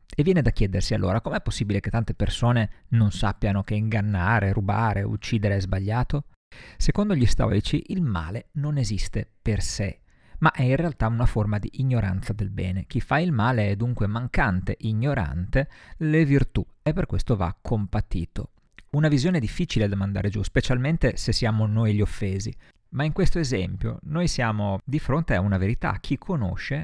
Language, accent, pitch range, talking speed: Italian, native, 100-135 Hz, 170 wpm